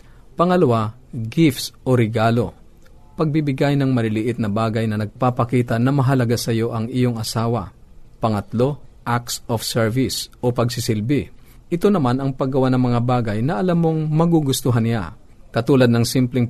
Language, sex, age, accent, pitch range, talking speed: Filipino, male, 50-69, native, 110-135 Hz, 140 wpm